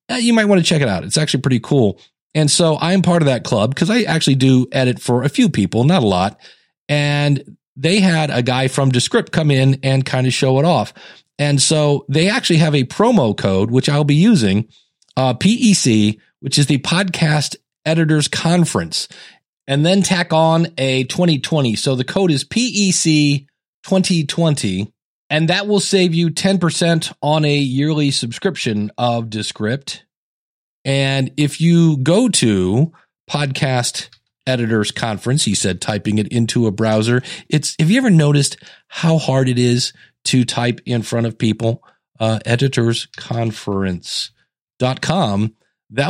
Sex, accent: male, American